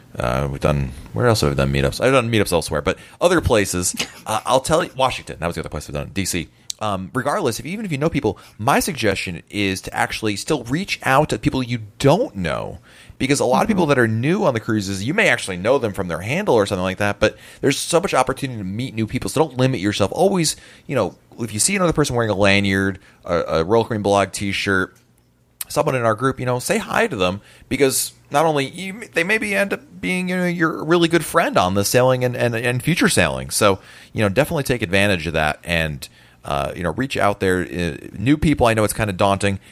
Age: 30-49